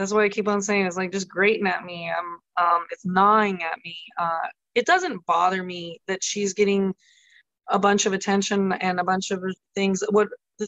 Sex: female